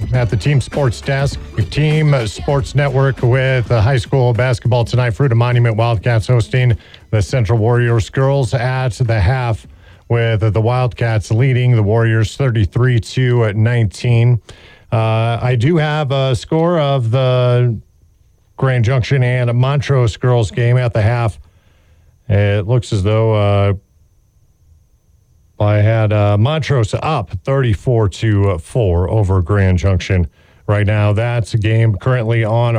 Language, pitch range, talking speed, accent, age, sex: English, 105-125 Hz, 135 wpm, American, 40-59, male